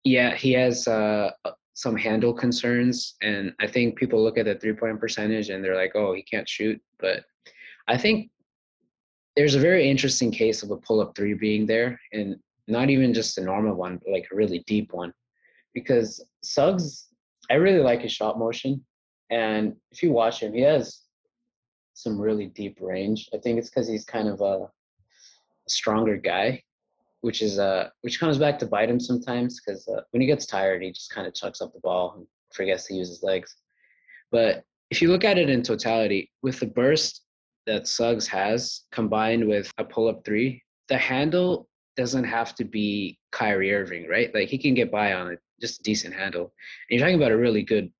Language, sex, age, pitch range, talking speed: English, male, 20-39, 105-125 Hz, 195 wpm